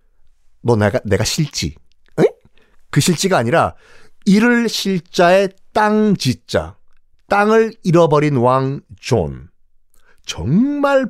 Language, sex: Korean, male